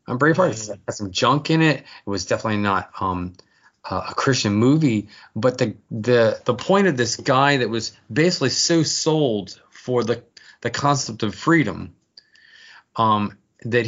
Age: 30-49